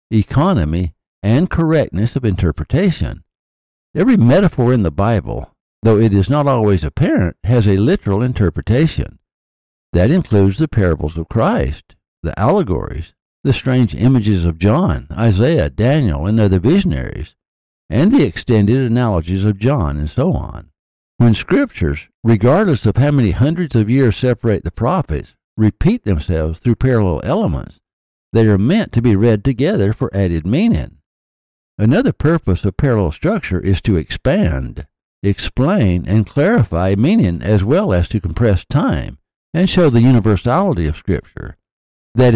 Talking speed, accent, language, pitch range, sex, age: 140 wpm, American, English, 90-125 Hz, male, 60-79